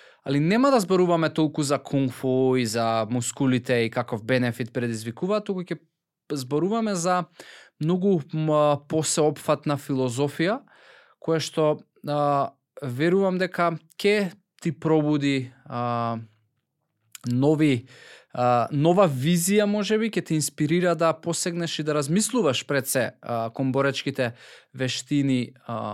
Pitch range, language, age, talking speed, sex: 125-165 Hz, English, 20-39, 110 wpm, male